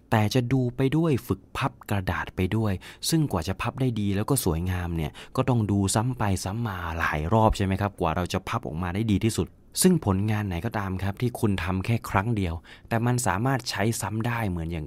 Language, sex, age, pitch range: English, male, 20-39, 95-120 Hz